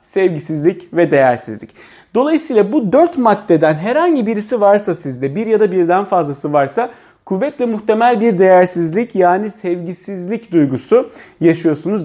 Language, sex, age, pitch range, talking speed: Turkish, male, 40-59, 160-220 Hz, 125 wpm